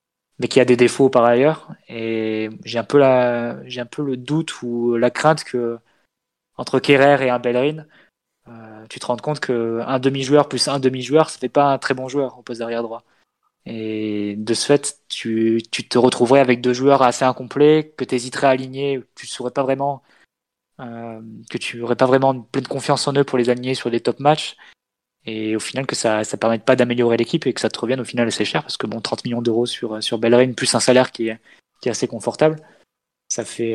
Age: 20-39